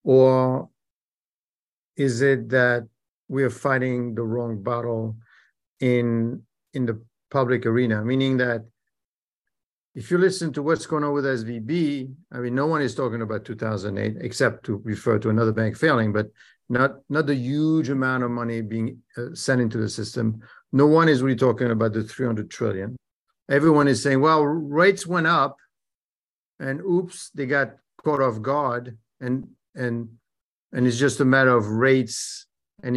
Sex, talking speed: male, 160 wpm